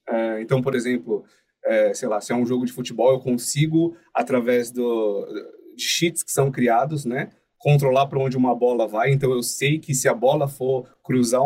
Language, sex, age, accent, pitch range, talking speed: Portuguese, male, 30-49, Brazilian, 115-150 Hz, 200 wpm